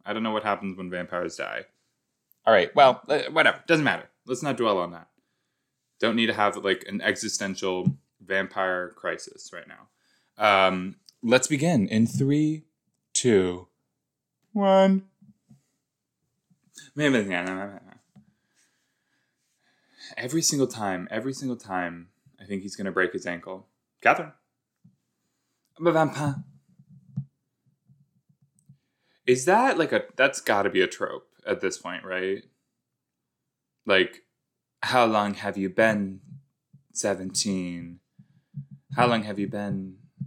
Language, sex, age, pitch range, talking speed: English, male, 20-39, 95-145 Hz, 120 wpm